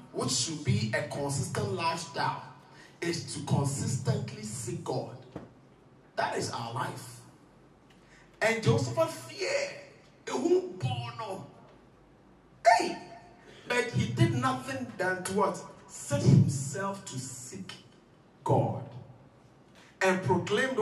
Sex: male